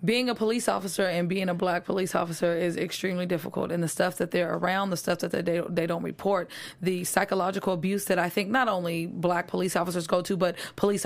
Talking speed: 220 wpm